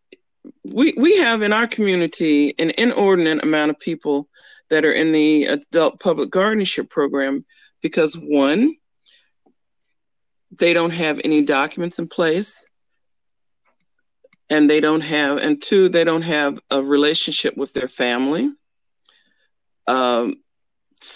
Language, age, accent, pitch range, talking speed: English, 50-69, American, 150-195 Hz, 120 wpm